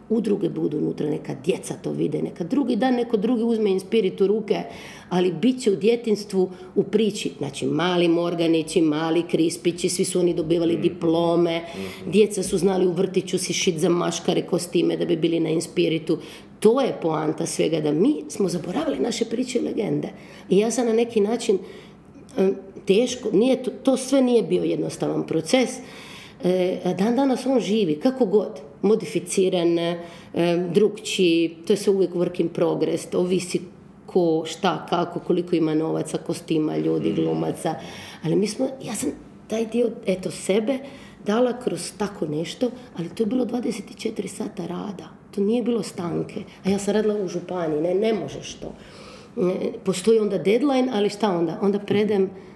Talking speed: 160 wpm